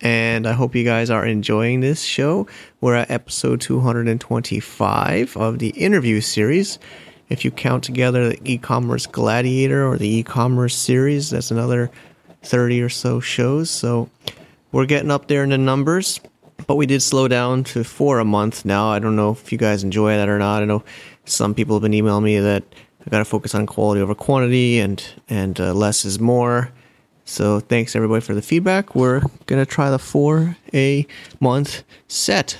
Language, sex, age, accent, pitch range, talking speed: English, male, 30-49, American, 110-135 Hz, 180 wpm